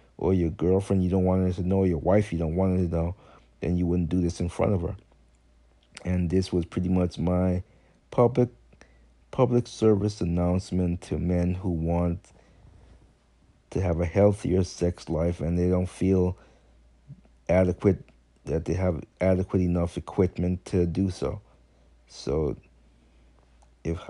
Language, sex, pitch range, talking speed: English, male, 85-95 Hz, 155 wpm